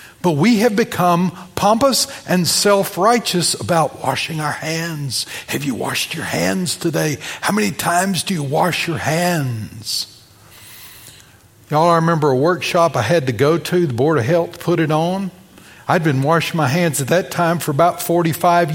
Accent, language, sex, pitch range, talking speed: American, English, male, 125-170 Hz, 170 wpm